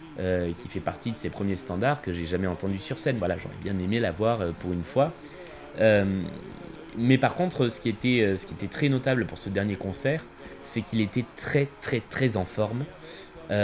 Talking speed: 205 wpm